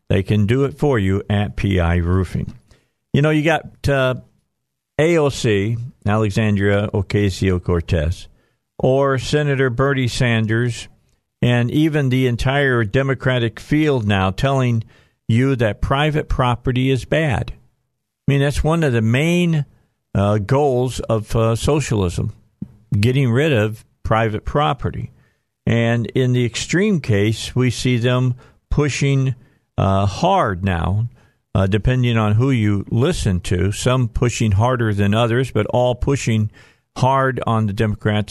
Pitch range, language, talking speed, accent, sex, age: 105-130 Hz, English, 130 wpm, American, male, 50-69